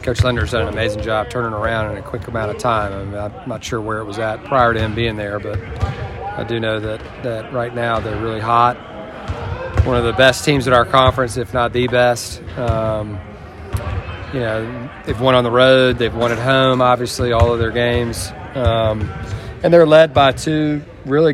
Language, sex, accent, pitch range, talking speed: English, male, American, 110-125 Hz, 210 wpm